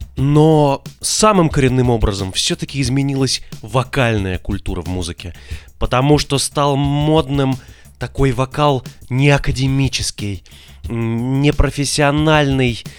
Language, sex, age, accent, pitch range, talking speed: Russian, male, 20-39, native, 105-140 Hz, 85 wpm